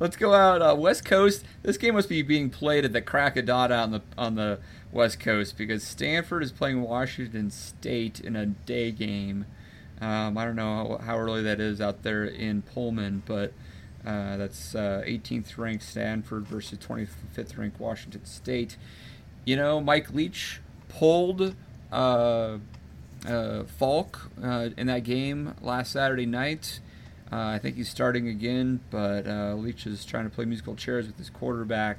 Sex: male